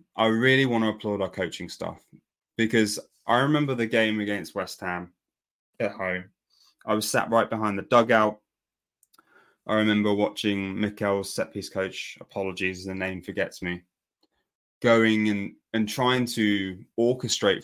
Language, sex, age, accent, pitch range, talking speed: English, male, 20-39, British, 95-110 Hz, 145 wpm